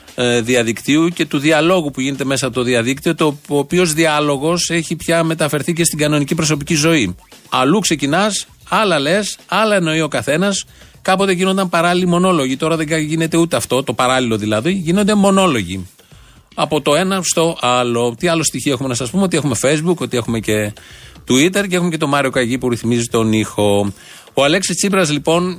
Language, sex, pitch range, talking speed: Greek, male, 125-165 Hz, 175 wpm